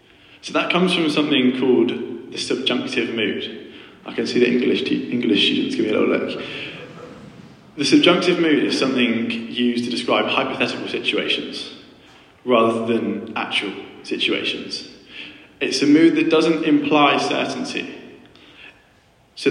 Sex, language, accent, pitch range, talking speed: male, English, British, 125-175 Hz, 130 wpm